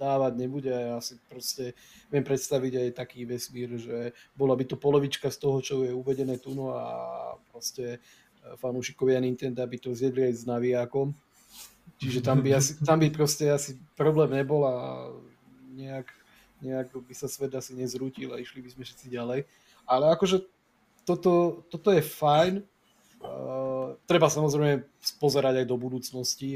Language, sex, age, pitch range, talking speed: Slovak, male, 30-49, 120-135 Hz, 155 wpm